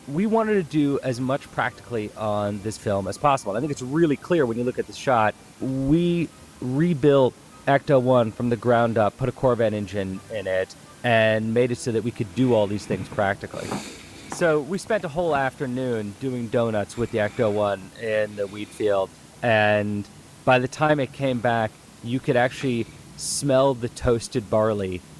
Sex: male